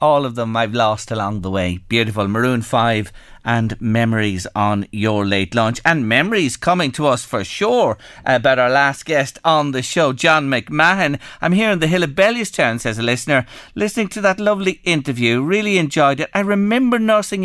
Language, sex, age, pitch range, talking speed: English, male, 40-59, 120-190 Hz, 190 wpm